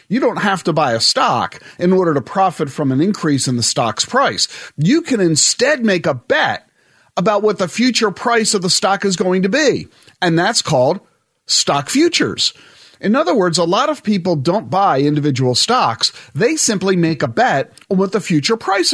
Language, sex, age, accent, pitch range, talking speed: English, male, 40-59, American, 150-225 Hz, 195 wpm